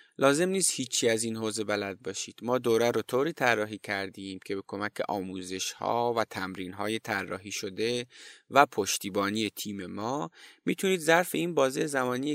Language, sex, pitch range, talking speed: Persian, male, 105-130 Hz, 155 wpm